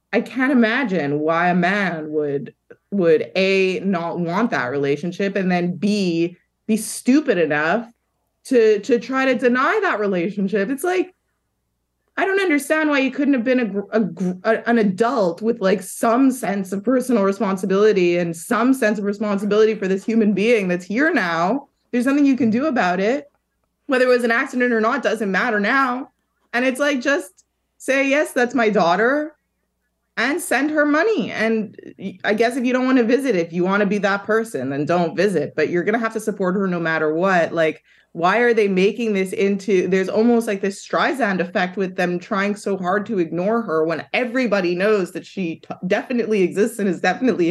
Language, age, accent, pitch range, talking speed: English, 20-39, American, 185-245 Hz, 190 wpm